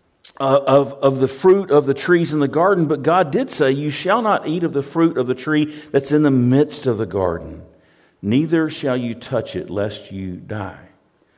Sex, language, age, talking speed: male, English, 50-69, 205 wpm